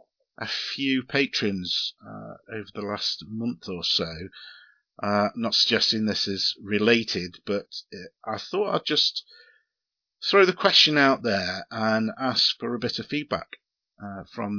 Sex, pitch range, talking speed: male, 105-125 Hz, 145 wpm